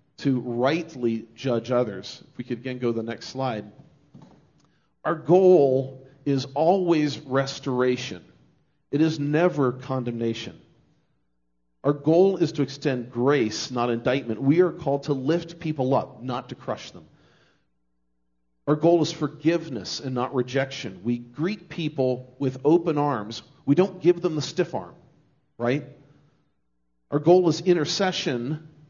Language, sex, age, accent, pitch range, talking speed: English, male, 40-59, American, 120-155 Hz, 135 wpm